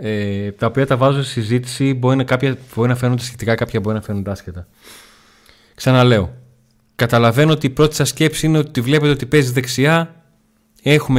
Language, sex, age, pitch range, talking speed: Greek, male, 30-49, 110-140 Hz, 155 wpm